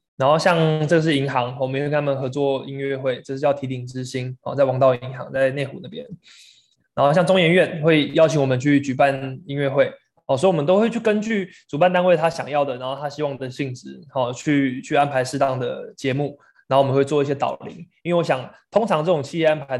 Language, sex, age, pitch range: Chinese, male, 20-39, 135-155 Hz